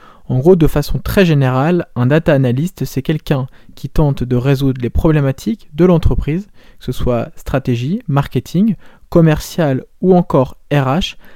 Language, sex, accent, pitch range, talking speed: French, male, French, 135-180 Hz, 150 wpm